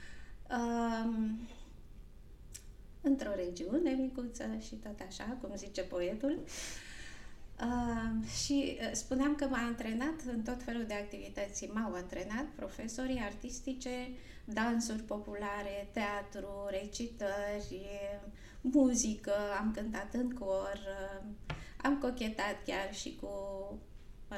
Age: 20-39